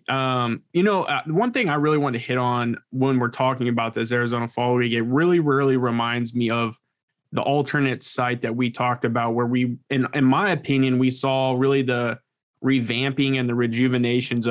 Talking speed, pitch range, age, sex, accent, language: 195 wpm, 120-140 Hz, 20-39, male, American, English